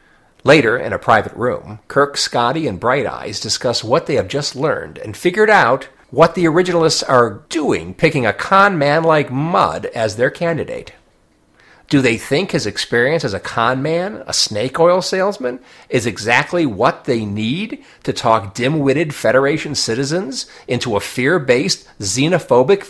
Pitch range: 120-185 Hz